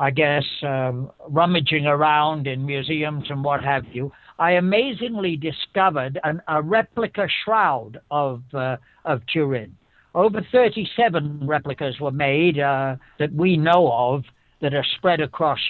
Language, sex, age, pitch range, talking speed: English, male, 60-79, 140-185 Hz, 140 wpm